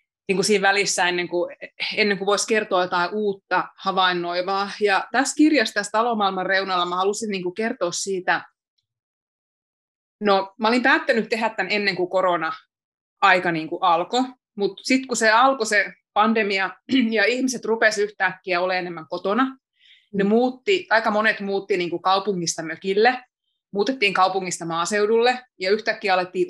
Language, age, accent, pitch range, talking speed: Finnish, 30-49, native, 180-220 Hz, 120 wpm